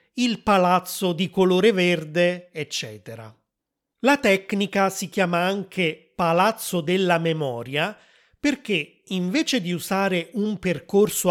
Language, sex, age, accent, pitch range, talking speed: Italian, male, 30-49, native, 160-200 Hz, 105 wpm